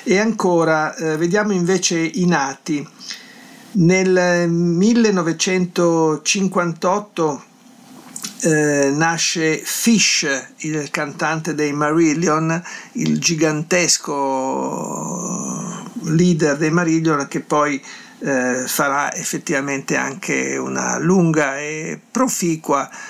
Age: 50-69